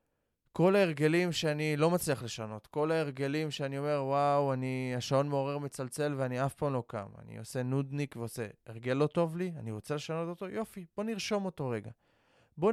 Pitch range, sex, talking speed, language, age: 125-175 Hz, male, 180 wpm, Hebrew, 20-39